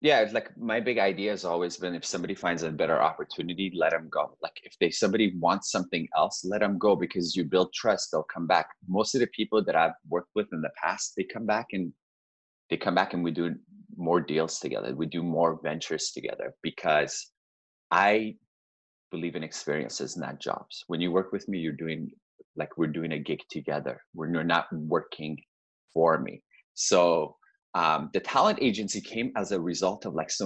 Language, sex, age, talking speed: English, male, 30-49, 200 wpm